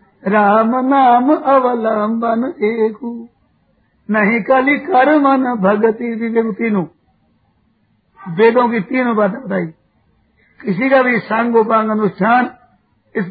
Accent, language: native, Hindi